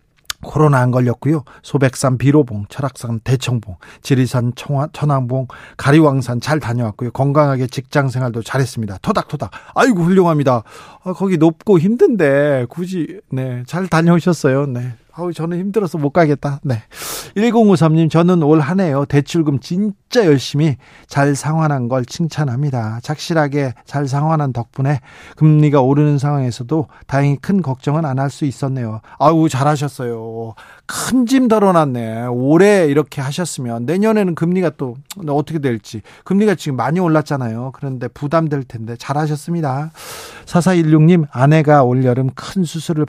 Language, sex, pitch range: Korean, male, 130-160 Hz